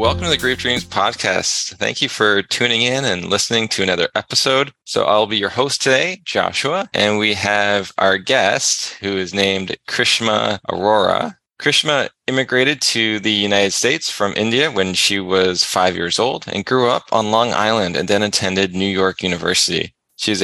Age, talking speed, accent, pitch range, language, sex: 20-39, 175 wpm, American, 95-115 Hz, English, male